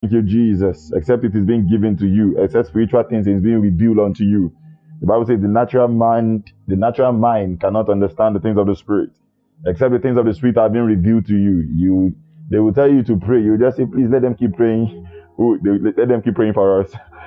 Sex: male